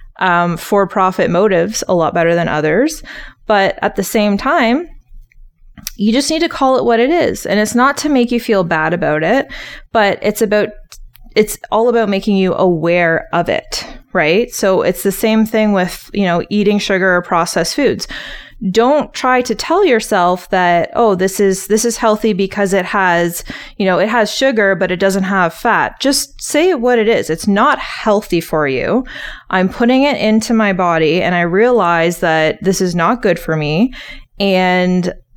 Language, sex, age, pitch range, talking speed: English, female, 20-39, 180-225 Hz, 185 wpm